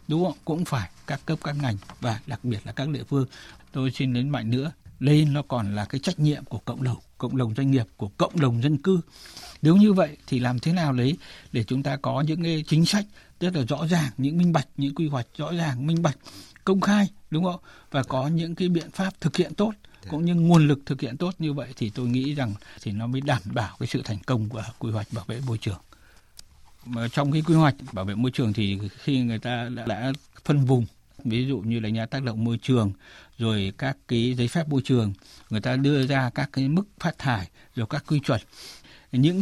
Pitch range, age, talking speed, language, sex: 120-155 Hz, 60-79, 240 wpm, Vietnamese, male